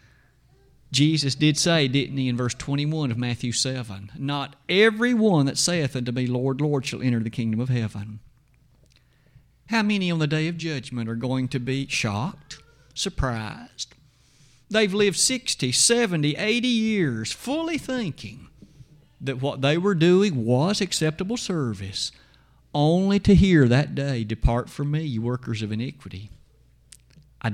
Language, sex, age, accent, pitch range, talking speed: English, male, 50-69, American, 130-175 Hz, 150 wpm